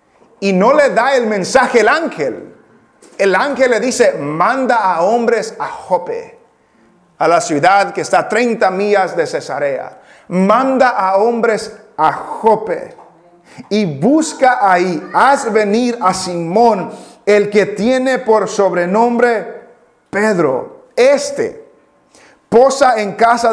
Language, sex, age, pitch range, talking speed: English, male, 40-59, 195-255 Hz, 125 wpm